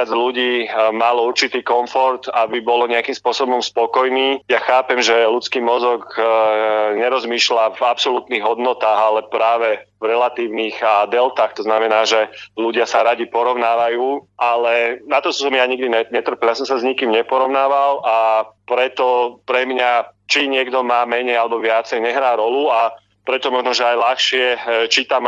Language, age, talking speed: Slovak, 30-49, 150 wpm